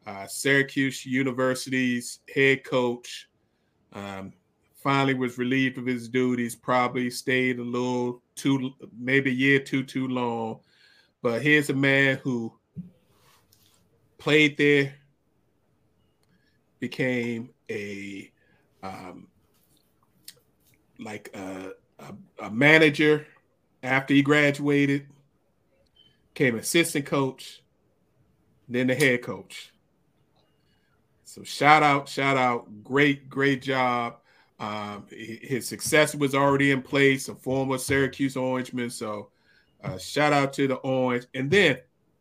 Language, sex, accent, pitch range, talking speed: English, male, American, 125-145 Hz, 105 wpm